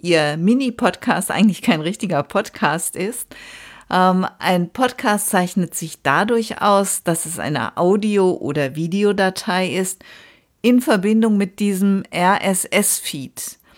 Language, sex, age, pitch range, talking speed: German, female, 50-69, 155-200 Hz, 110 wpm